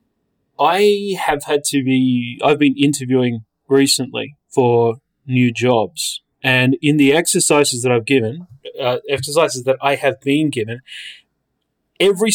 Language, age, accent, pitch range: English, 30-49, Australian, 130-160 Hz